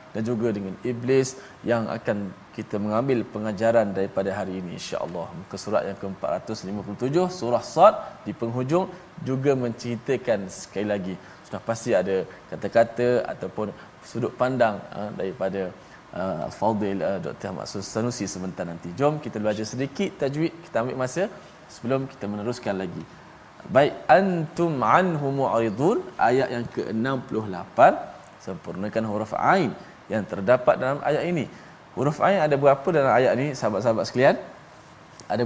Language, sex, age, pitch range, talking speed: Malayalam, male, 20-39, 105-130 Hz, 130 wpm